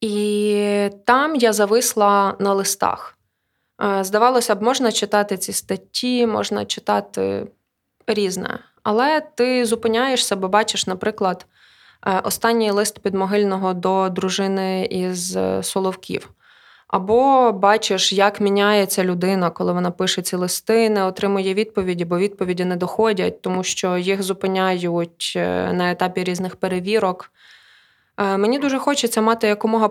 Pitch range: 190-220 Hz